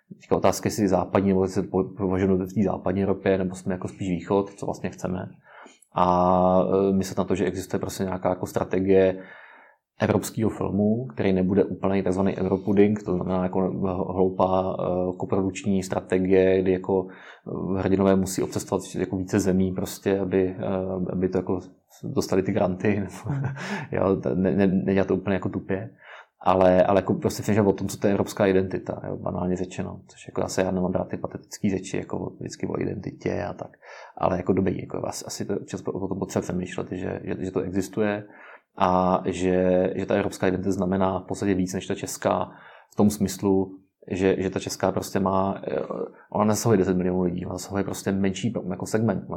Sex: male